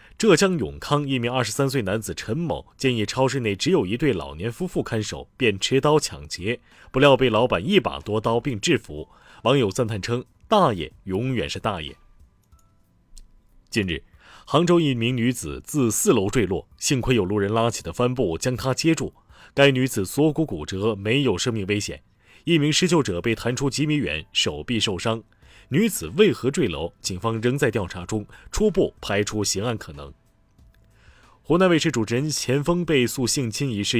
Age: 30-49